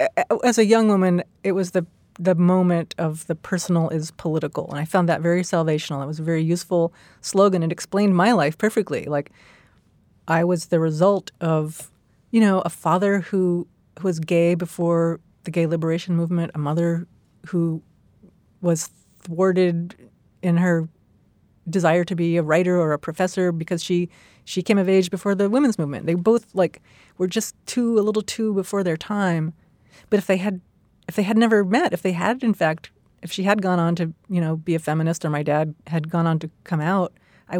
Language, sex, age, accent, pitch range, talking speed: English, female, 30-49, American, 165-200 Hz, 195 wpm